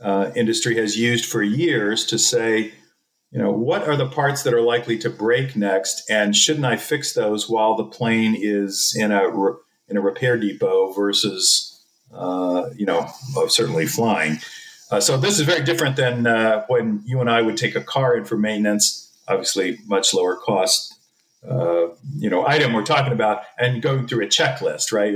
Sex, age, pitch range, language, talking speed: male, 50-69, 105-135 Hz, English, 185 wpm